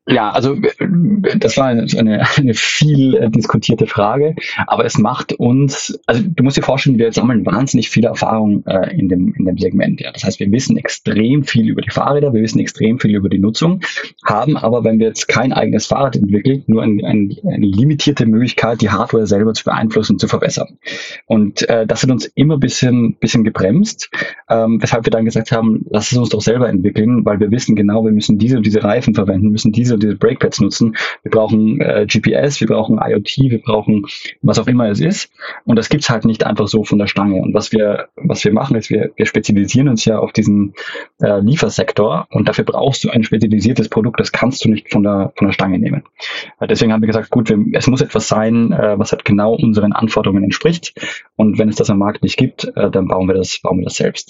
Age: 20-39